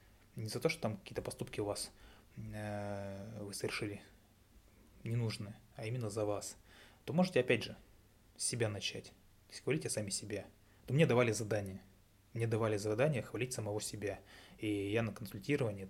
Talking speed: 160 wpm